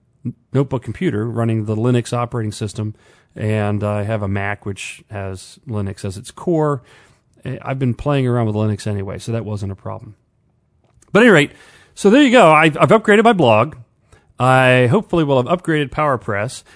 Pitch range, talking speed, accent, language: 115-150 Hz, 170 wpm, American, English